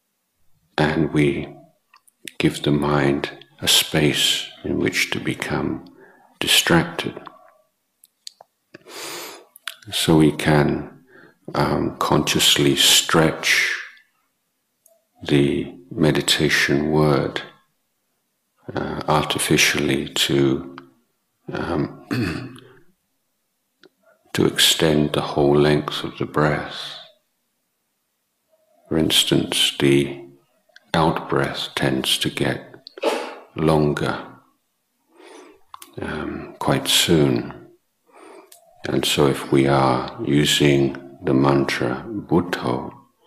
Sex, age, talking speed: male, 50-69, 75 wpm